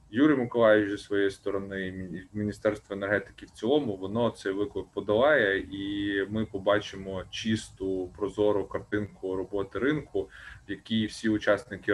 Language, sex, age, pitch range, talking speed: Ukrainian, male, 20-39, 100-115 Hz, 130 wpm